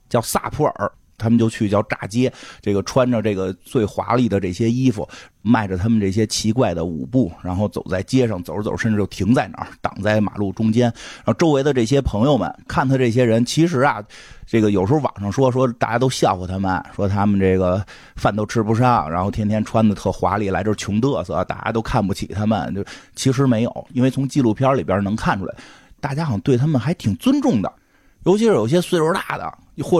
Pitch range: 105-130 Hz